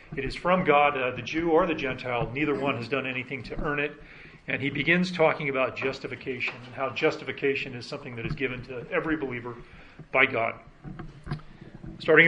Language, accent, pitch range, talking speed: English, American, 125-150 Hz, 185 wpm